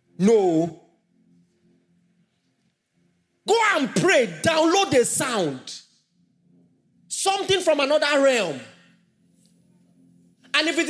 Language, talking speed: English, 75 wpm